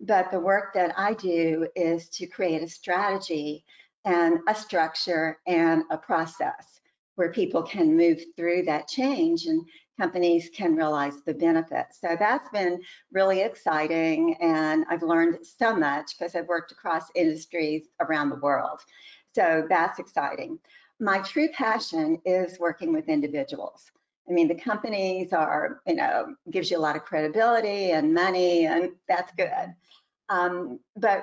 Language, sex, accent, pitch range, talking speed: English, female, American, 165-195 Hz, 150 wpm